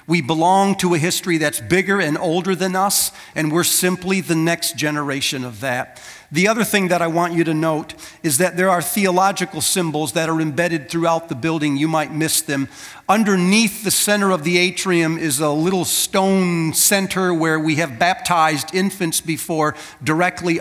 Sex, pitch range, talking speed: male, 155-185 Hz, 180 wpm